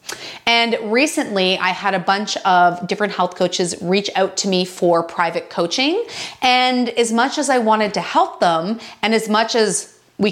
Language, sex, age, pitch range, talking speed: English, female, 30-49, 180-235 Hz, 180 wpm